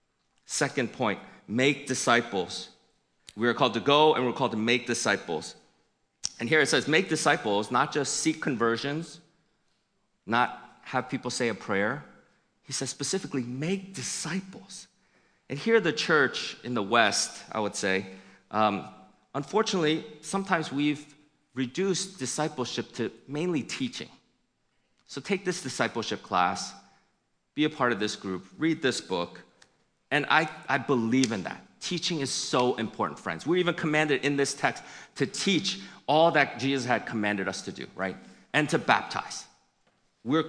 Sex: male